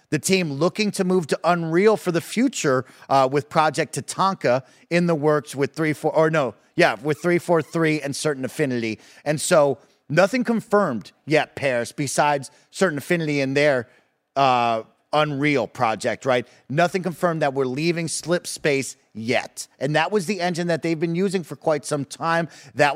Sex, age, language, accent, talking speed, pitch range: male, 30-49, English, American, 175 wpm, 135-170 Hz